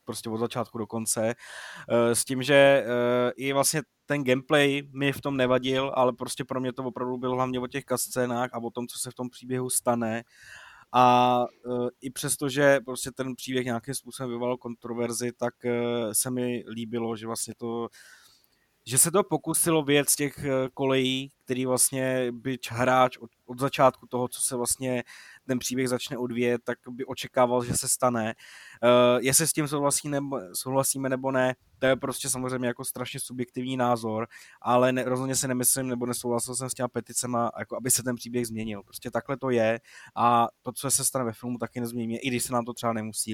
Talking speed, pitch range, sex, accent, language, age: 190 wpm, 120-140 Hz, male, native, Czech, 20-39